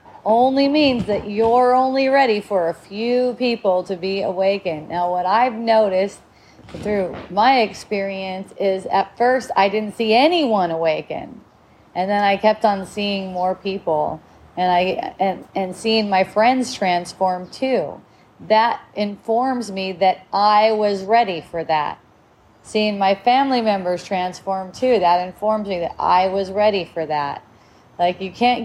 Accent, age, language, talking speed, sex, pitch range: American, 30-49, English, 145 wpm, female, 185-240 Hz